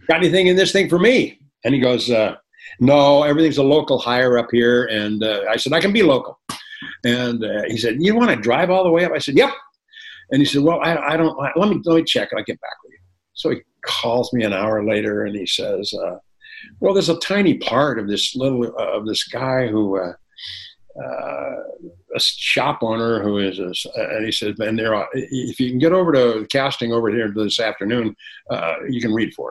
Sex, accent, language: male, American, English